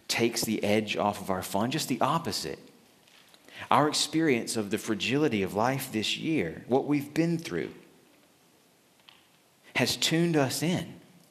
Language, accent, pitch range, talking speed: English, American, 100-130 Hz, 145 wpm